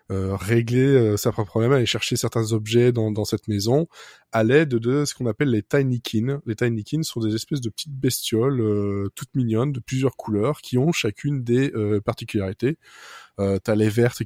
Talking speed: 195 wpm